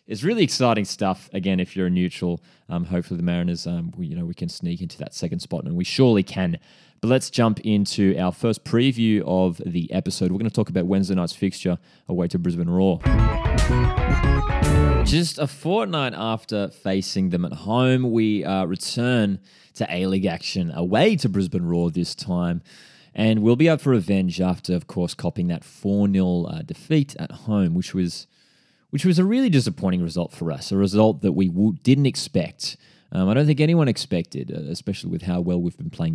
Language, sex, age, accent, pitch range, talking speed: English, male, 20-39, Australian, 90-140 Hz, 190 wpm